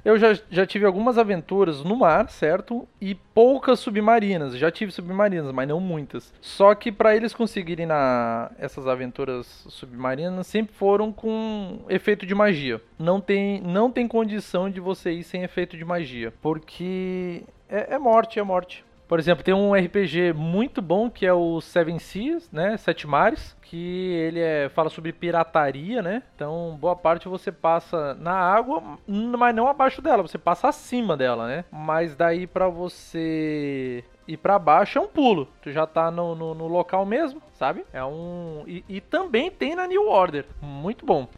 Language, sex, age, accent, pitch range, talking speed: Portuguese, male, 20-39, Brazilian, 160-210 Hz, 175 wpm